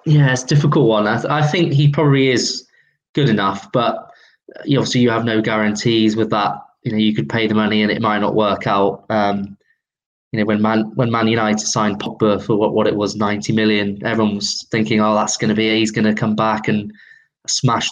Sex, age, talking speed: male, 20-39, 230 wpm